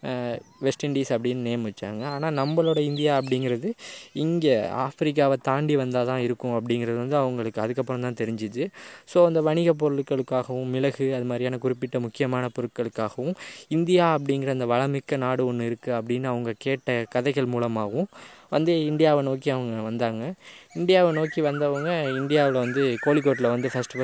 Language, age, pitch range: Tamil, 20-39, 120-150 Hz